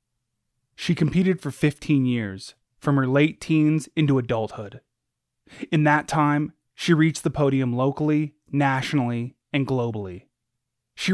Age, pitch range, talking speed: 20-39, 120-155 Hz, 125 wpm